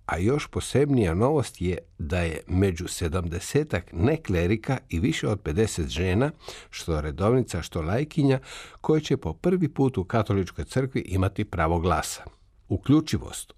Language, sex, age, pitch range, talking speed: Croatian, male, 60-79, 90-115 Hz, 135 wpm